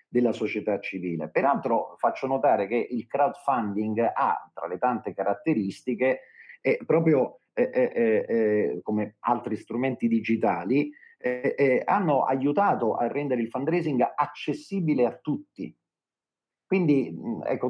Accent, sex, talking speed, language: native, male, 120 wpm, Italian